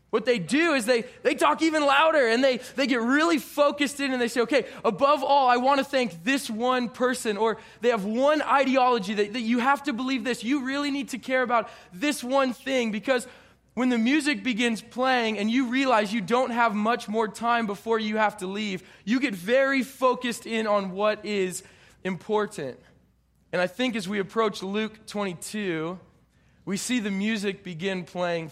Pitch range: 190-250 Hz